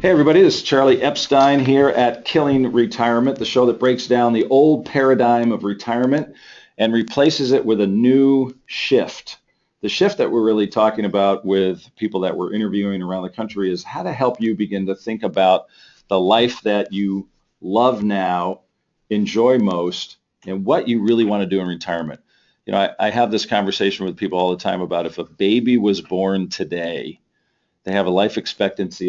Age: 40-59